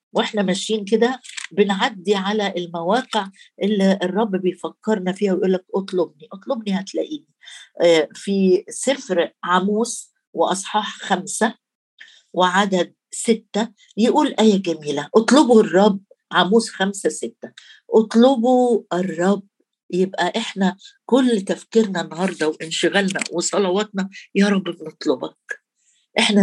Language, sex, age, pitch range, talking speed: Arabic, female, 50-69, 185-230 Hz, 95 wpm